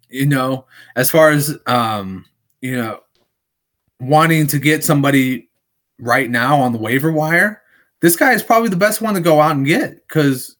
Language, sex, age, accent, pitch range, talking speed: English, male, 30-49, American, 125-160 Hz, 175 wpm